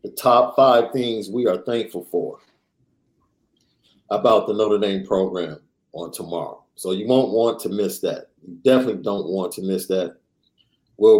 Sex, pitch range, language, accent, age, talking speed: male, 105-135 Hz, English, American, 50-69, 160 wpm